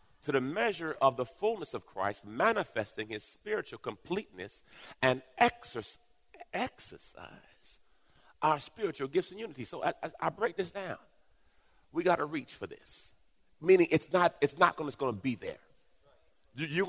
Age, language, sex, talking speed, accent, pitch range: 40-59, English, male, 150 wpm, American, 135-175 Hz